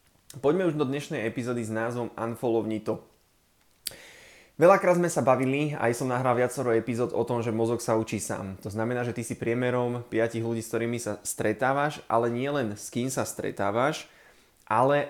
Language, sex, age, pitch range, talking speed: Slovak, male, 20-39, 110-130 Hz, 175 wpm